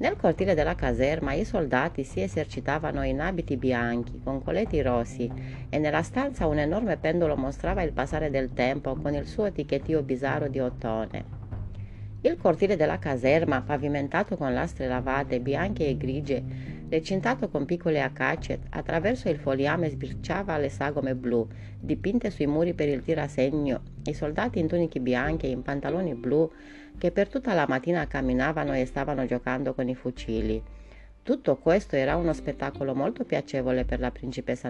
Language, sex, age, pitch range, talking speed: Italian, female, 30-49, 125-160 Hz, 155 wpm